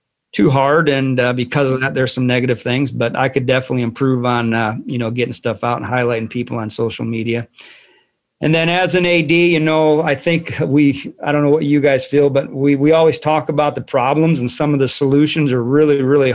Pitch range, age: 125-145 Hz, 40-59